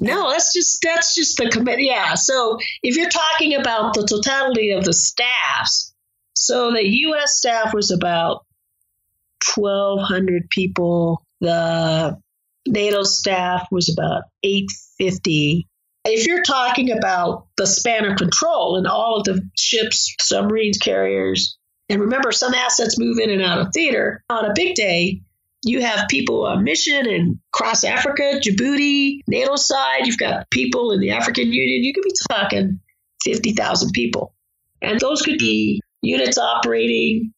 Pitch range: 185-250 Hz